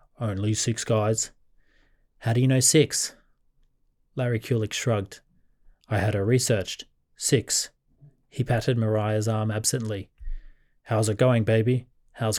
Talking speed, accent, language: 125 wpm, Australian, English